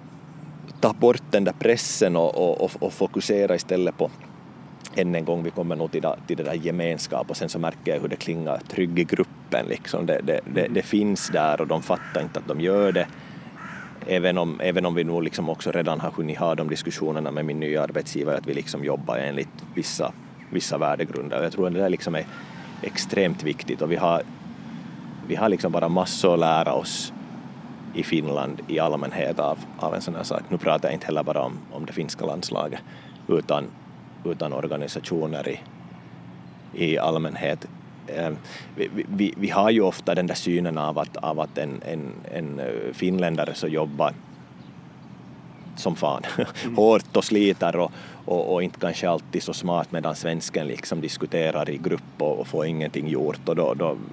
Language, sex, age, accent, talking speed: Swedish, male, 30-49, Finnish, 185 wpm